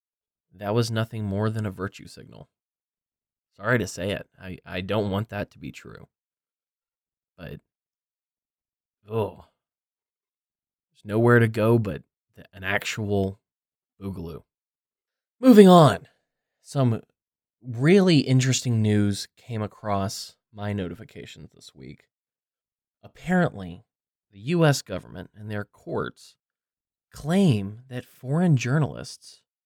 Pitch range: 100-135 Hz